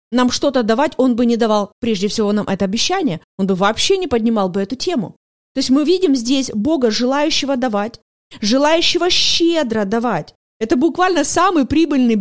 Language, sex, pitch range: Russian, female, 230-315 Hz